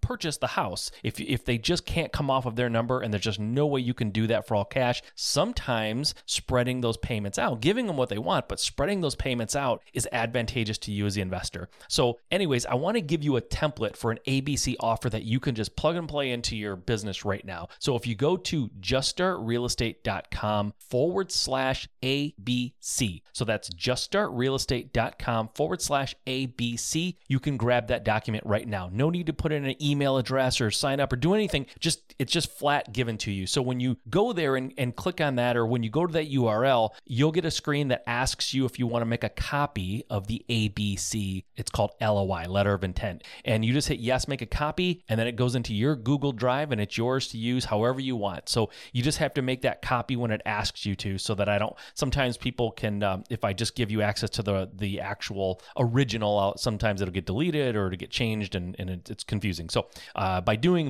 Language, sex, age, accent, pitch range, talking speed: English, male, 30-49, American, 105-135 Hz, 225 wpm